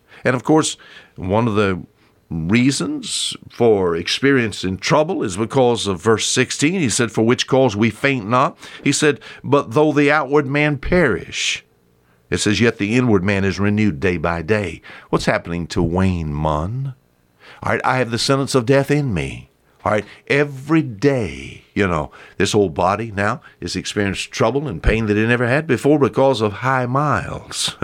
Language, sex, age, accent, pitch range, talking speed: English, male, 60-79, American, 95-140 Hz, 175 wpm